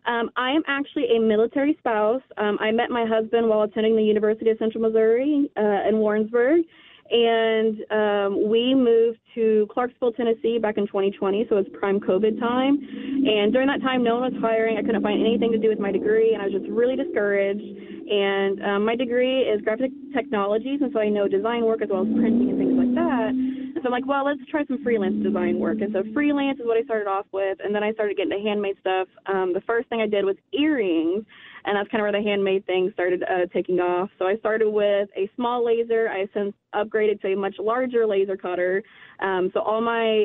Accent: American